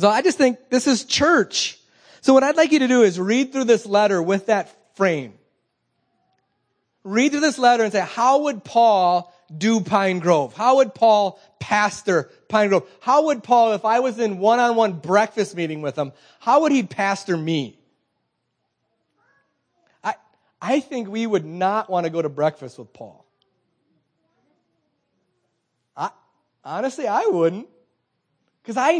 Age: 30-49